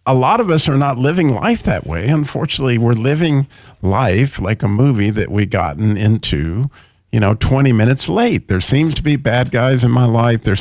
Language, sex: English, male